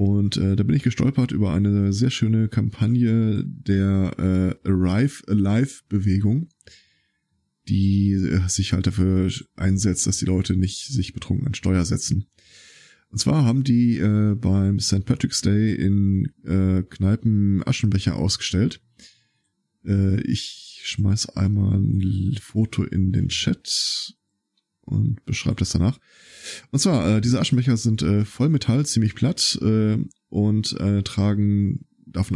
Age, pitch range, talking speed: 20-39, 95-120 Hz, 135 wpm